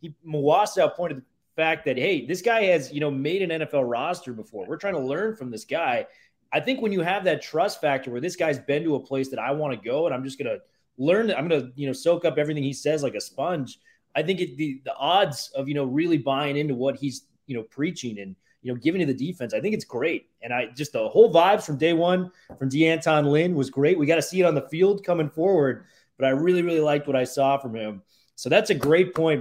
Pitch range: 130-170 Hz